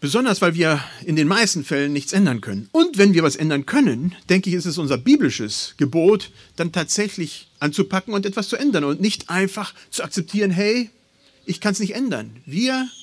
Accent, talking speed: German, 195 wpm